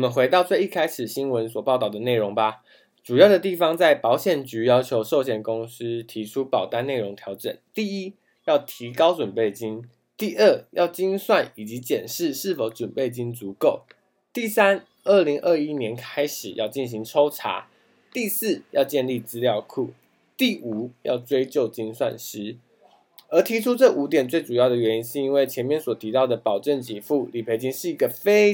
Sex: male